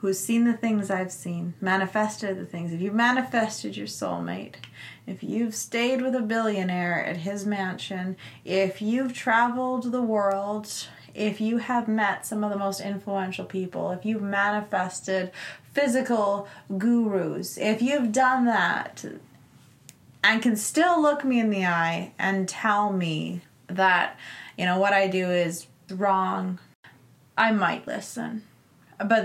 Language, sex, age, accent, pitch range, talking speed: English, female, 20-39, American, 175-225 Hz, 145 wpm